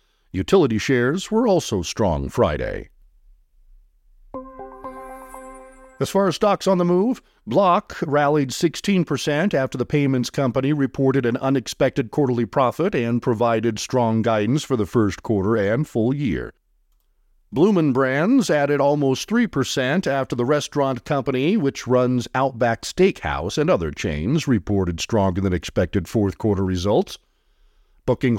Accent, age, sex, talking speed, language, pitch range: American, 50-69, male, 120 wpm, English, 115-150 Hz